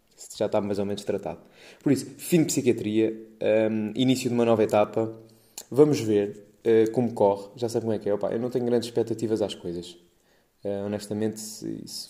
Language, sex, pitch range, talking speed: Portuguese, male, 110-130 Hz, 195 wpm